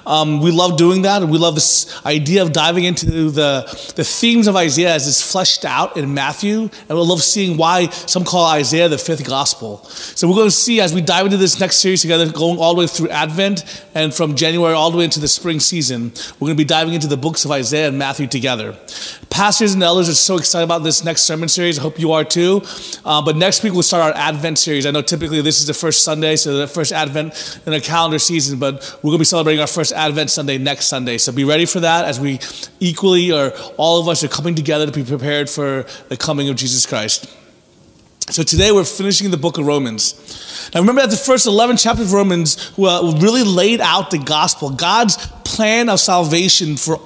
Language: English